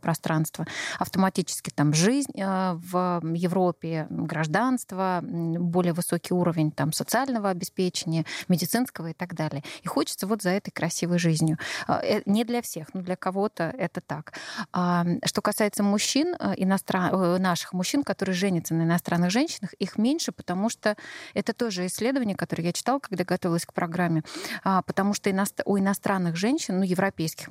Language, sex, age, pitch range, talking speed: Russian, female, 20-39, 175-215 Hz, 140 wpm